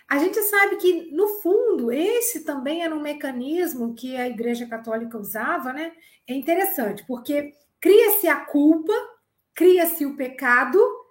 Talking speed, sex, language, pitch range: 140 wpm, female, Portuguese, 275-370 Hz